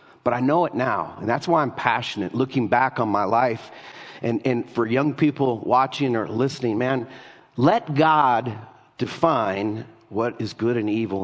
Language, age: English, 50-69